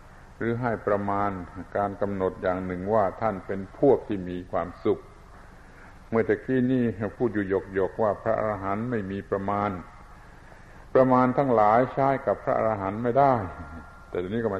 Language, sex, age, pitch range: Thai, male, 60-79, 95-115 Hz